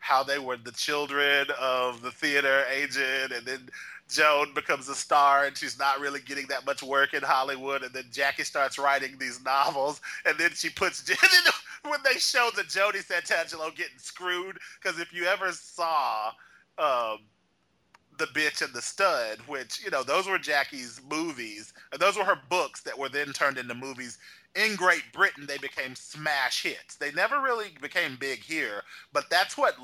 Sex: male